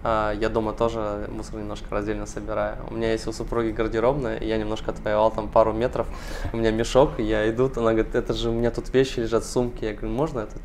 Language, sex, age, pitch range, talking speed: Russian, male, 20-39, 110-125 Hz, 220 wpm